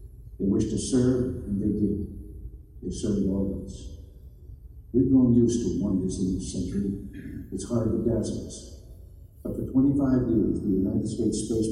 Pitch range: 95-115 Hz